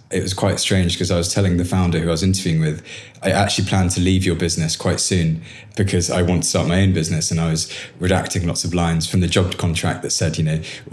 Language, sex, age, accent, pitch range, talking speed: English, male, 20-39, British, 80-95 Hz, 260 wpm